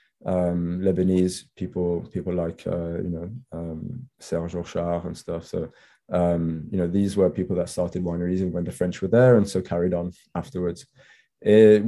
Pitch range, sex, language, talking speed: 90-110 Hz, male, English, 165 wpm